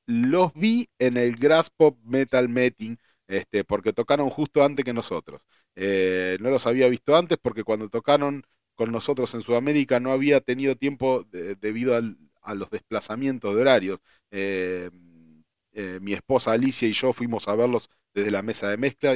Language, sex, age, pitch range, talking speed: Spanish, male, 40-59, 100-130 Hz, 165 wpm